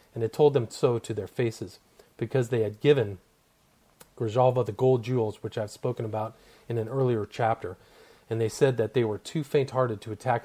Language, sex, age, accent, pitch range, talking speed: English, male, 40-59, American, 110-135 Hz, 195 wpm